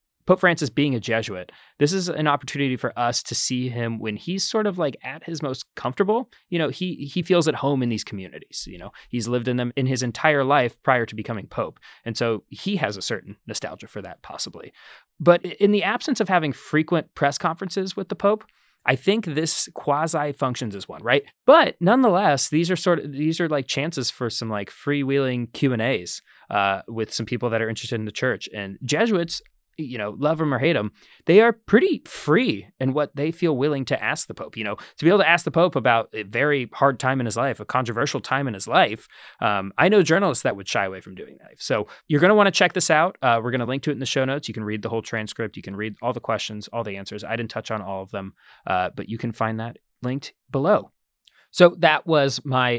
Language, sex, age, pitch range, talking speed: English, male, 20-39, 115-165 Hz, 240 wpm